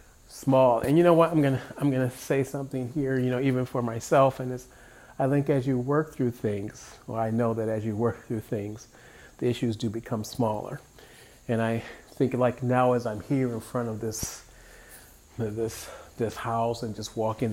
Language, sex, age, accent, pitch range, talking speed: English, male, 40-59, American, 110-130 Hz, 190 wpm